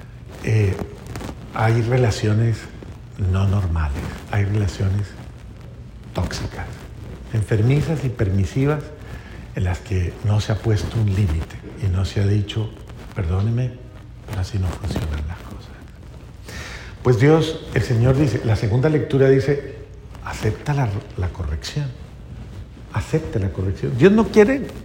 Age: 50-69